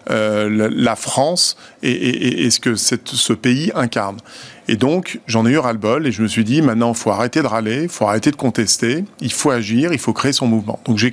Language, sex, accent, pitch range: French, male, French, 115-155 Hz